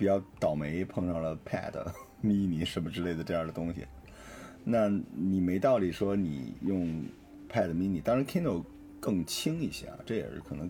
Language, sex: Chinese, male